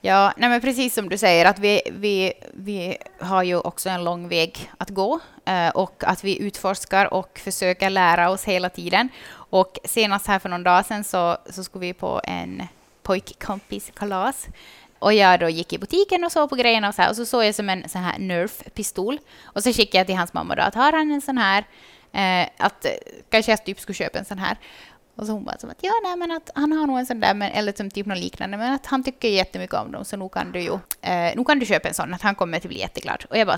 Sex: female